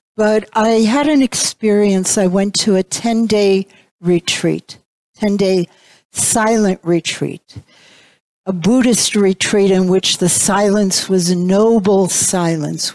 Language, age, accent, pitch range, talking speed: English, 60-79, American, 175-215 Hz, 115 wpm